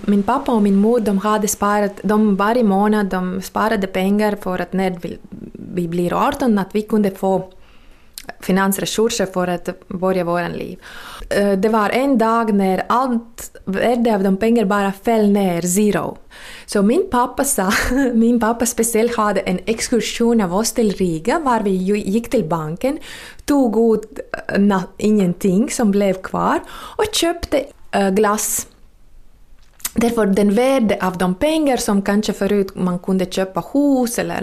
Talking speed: 145 wpm